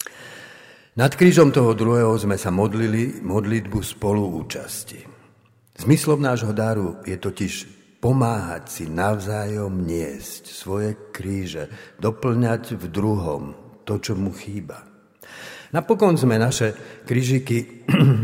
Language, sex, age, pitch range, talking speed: Slovak, male, 60-79, 95-120 Hz, 100 wpm